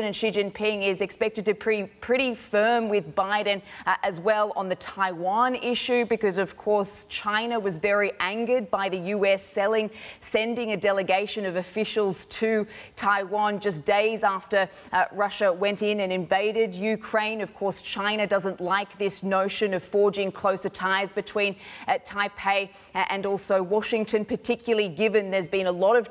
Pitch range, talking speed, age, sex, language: 195-215 Hz, 160 wpm, 20-39, female, English